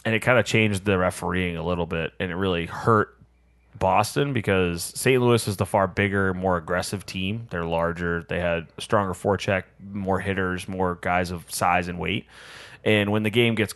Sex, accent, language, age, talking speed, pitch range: male, American, English, 20-39, 190 wpm, 95-120 Hz